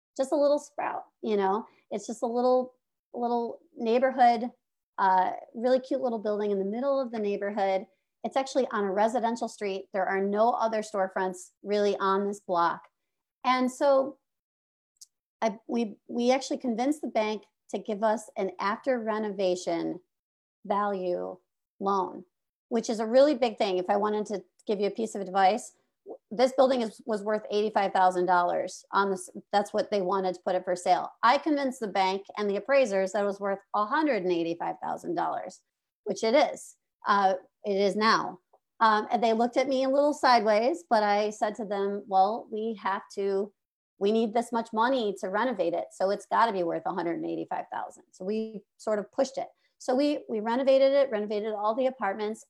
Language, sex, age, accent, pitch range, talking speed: English, female, 40-59, American, 195-245 Hz, 175 wpm